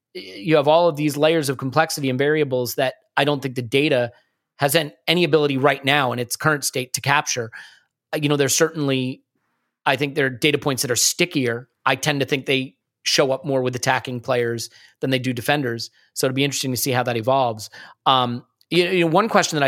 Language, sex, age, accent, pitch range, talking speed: English, male, 30-49, American, 130-160 Hz, 215 wpm